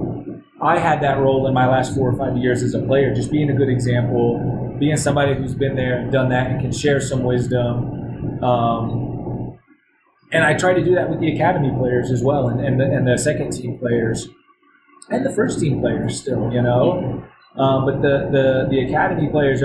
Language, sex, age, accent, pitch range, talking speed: English, male, 30-49, American, 125-150 Hz, 210 wpm